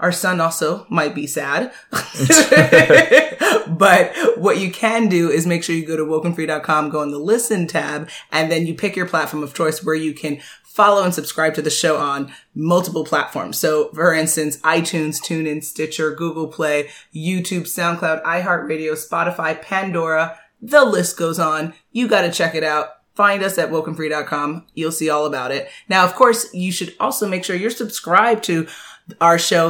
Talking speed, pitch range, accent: 180 wpm, 155-190 Hz, American